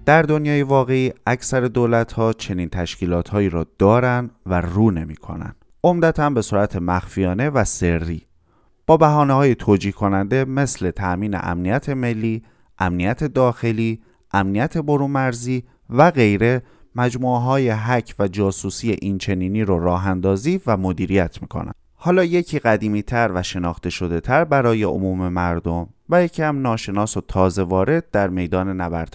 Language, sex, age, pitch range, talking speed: Persian, male, 30-49, 90-125 Hz, 140 wpm